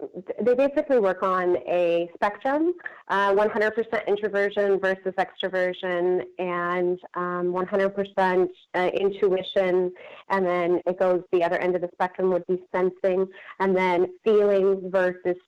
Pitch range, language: 185-230 Hz, English